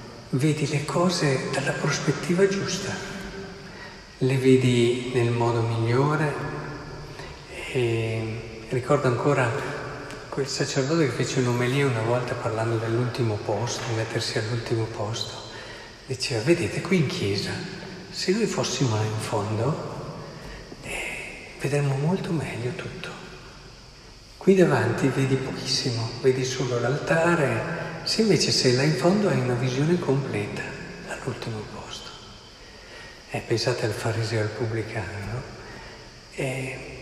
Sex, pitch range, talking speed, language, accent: male, 120-155 Hz, 110 wpm, Italian, native